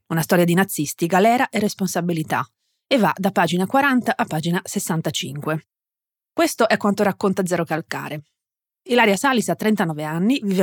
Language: Italian